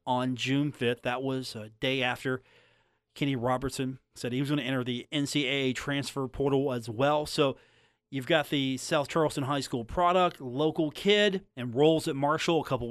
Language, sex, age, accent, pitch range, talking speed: English, male, 40-59, American, 125-165 Hz, 175 wpm